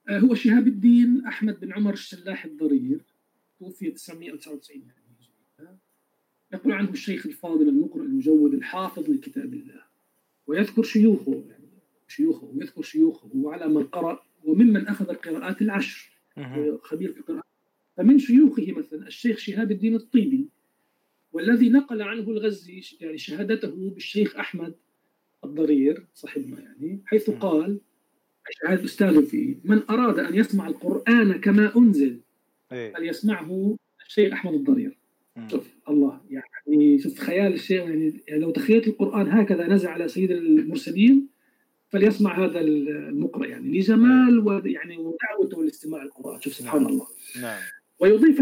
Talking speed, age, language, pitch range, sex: 120 wpm, 50-69, Arabic, 195-275 Hz, male